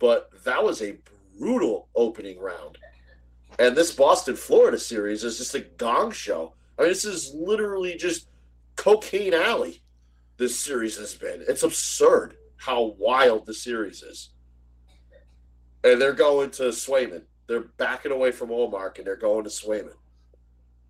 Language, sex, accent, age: English, male, American, 40-59